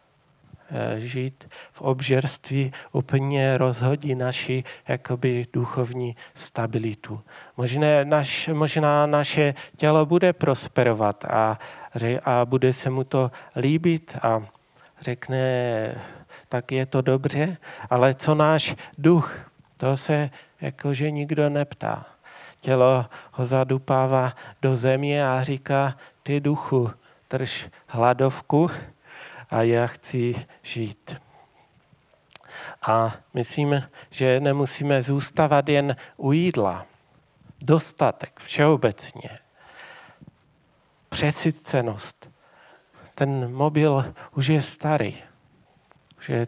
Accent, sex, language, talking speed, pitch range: native, male, Czech, 90 wpm, 125-145 Hz